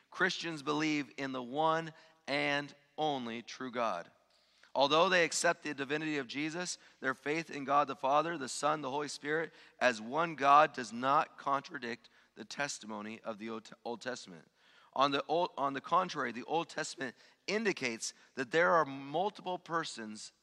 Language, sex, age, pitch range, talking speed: English, male, 30-49, 120-150 Hz, 160 wpm